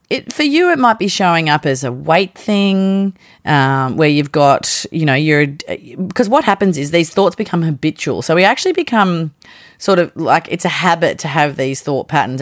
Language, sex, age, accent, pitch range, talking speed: English, female, 30-49, Australian, 145-185 Hz, 205 wpm